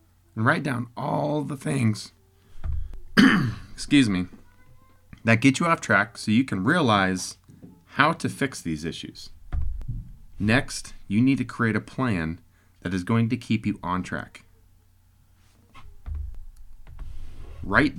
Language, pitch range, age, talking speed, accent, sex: English, 90-125 Hz, 30-49, 125 wpm, American, male